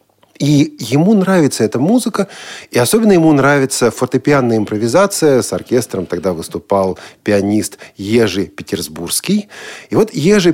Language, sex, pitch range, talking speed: Russian, male, 125-170 Hz, 120 wpm